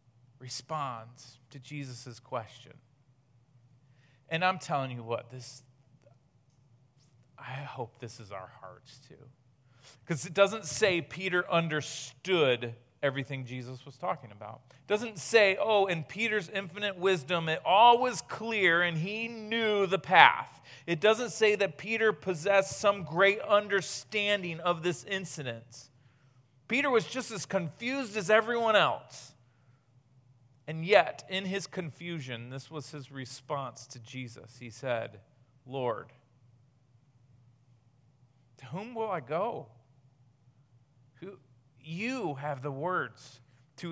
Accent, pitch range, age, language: American, 125-185 Hz, 40-59, English